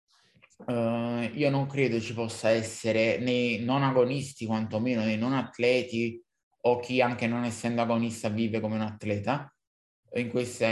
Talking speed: 145 wpm